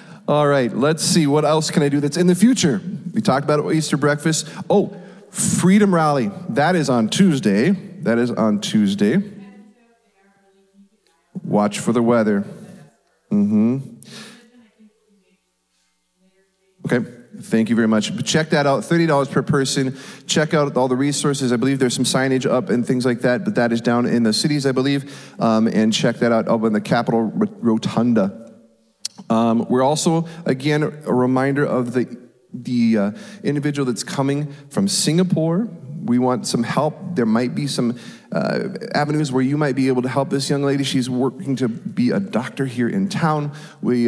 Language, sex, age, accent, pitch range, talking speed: English, male, 30-49, American, 120-190 Hz, 170 wpm